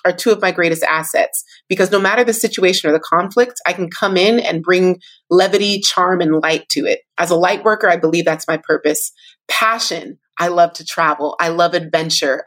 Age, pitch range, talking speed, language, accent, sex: 30-49, 170-210 Hz, 205 wpm, English, American, female